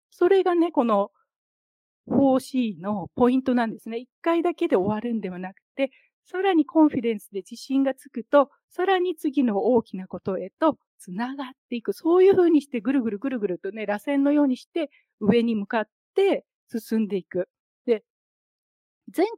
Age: 40-59